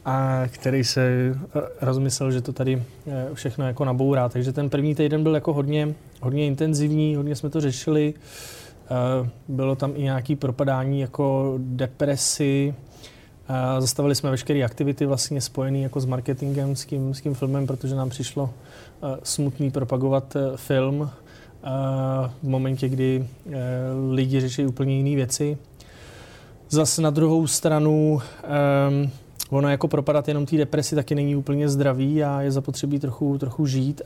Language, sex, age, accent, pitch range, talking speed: Czech, male, 20-39, native, 130-145 Hz, 125 wpm